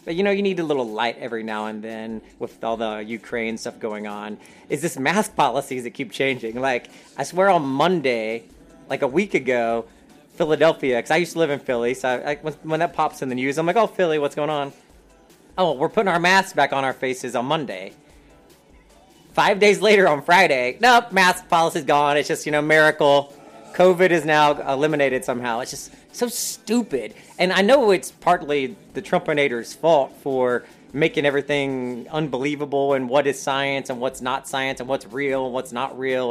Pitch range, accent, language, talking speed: 130-170 Hz, American, English, 195 wpm